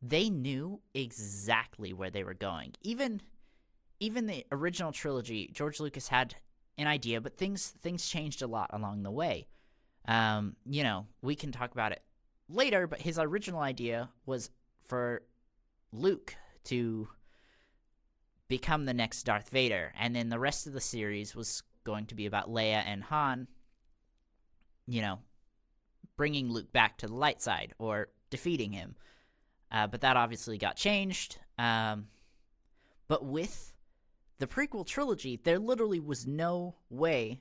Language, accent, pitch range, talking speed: English, American, 110-145 Hz, 150 wpm